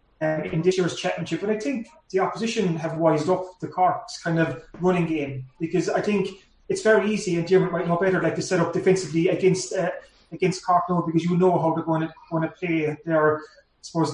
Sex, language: male, English